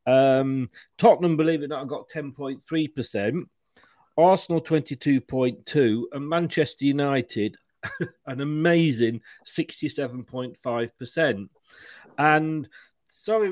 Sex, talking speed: male, 80 wpm